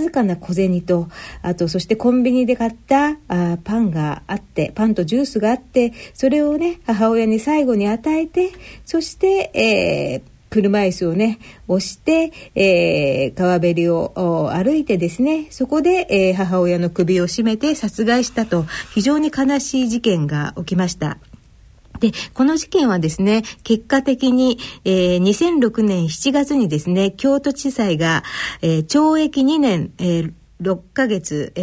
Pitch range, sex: 180-275 Hz, female